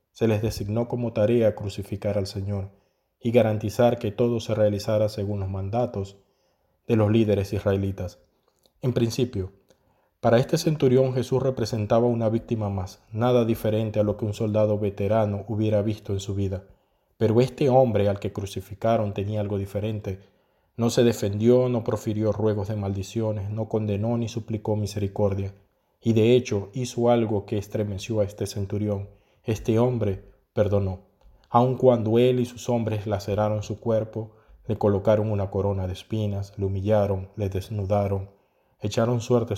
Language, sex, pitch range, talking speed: Spanish, male, 100-115 Hz, 150 wpm